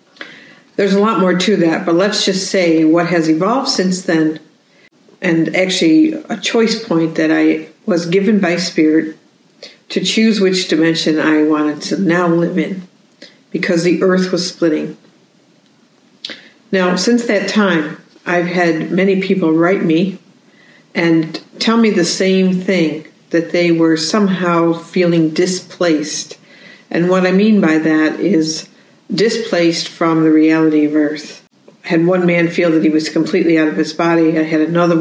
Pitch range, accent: 160-195 Hz, American